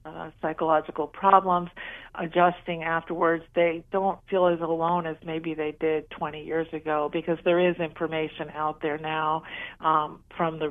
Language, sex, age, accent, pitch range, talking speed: English, female, 50-69, American, 155-175 Hz, 155 wpm